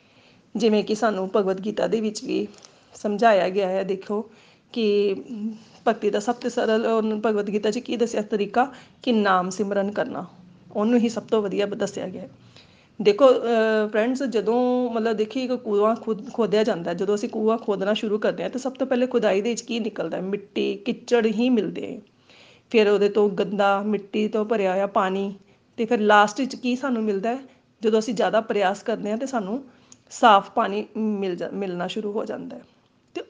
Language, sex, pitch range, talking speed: Punjabi, female, 205-240 Hz, 180 wpm